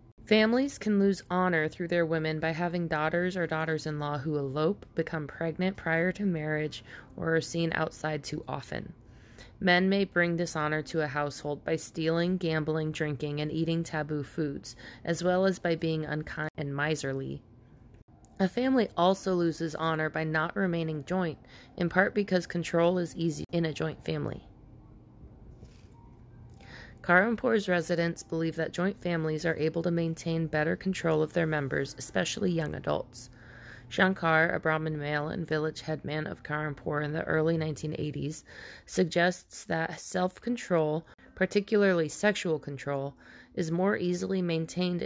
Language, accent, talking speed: English, American, 145 wpm